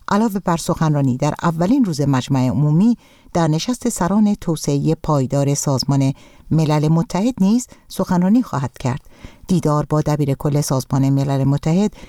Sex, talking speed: female, 135 wpm